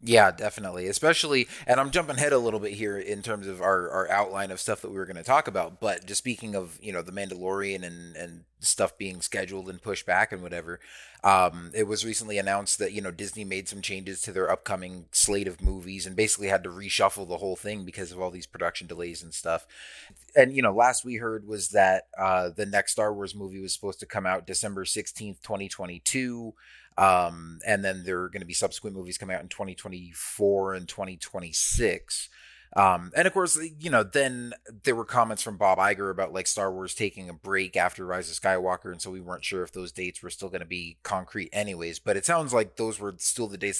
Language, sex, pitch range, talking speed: English, male, 90-105 Hz, 225 wpm